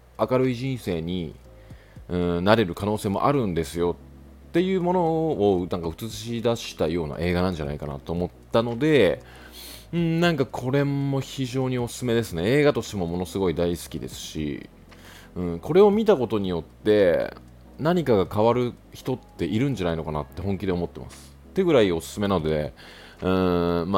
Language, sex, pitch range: Japanese, male, 75-105 Hz